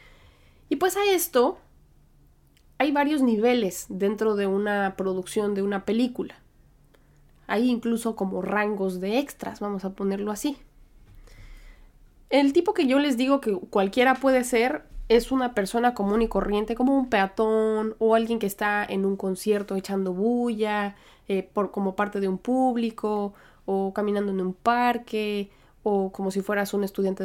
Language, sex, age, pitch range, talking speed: Spanish, female, 20-39, 195-230 Hz, 150 wpm